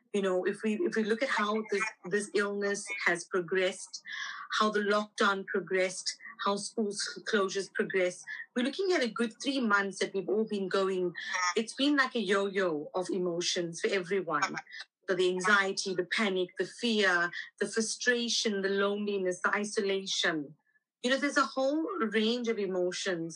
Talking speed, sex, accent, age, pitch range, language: 165 wpm, female, Indian, 30-49, 185-220 Hz, English